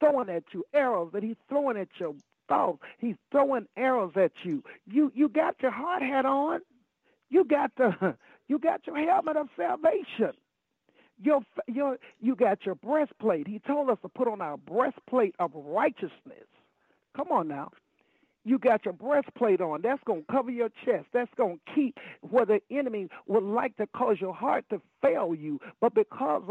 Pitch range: 210-280 Hz